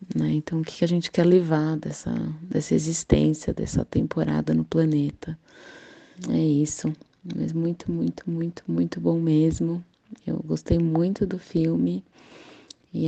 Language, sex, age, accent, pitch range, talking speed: Portuguese, female, 20-39, Brazilian, 135-165 Hz, 135 wpm